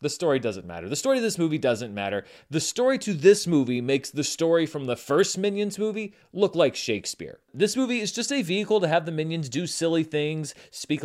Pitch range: 130-195 Hz